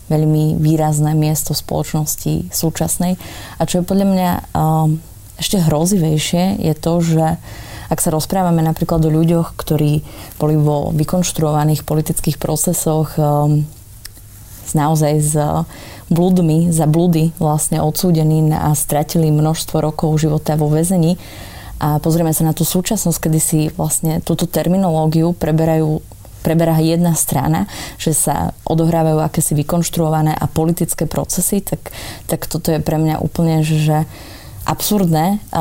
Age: 20-39